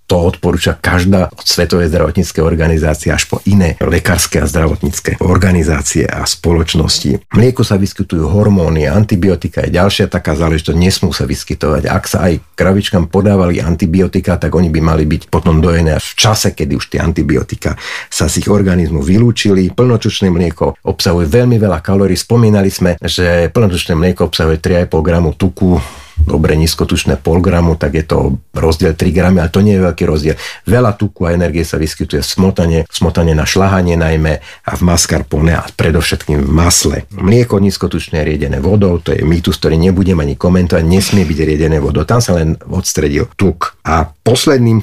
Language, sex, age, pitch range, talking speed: Slovak, male, 50-69, 80-95 Hz, 165 wpm